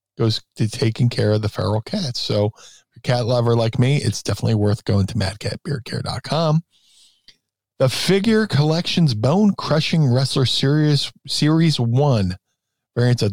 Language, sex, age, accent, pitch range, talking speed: English, male, 50-69, American, 110-135 Hz, 145 wpm